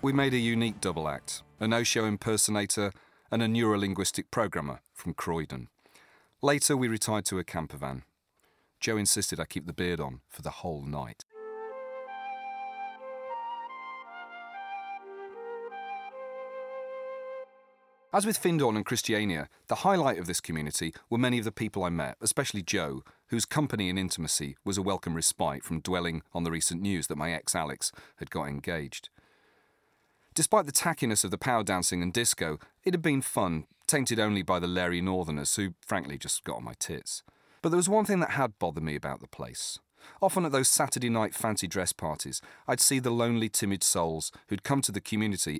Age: 40-59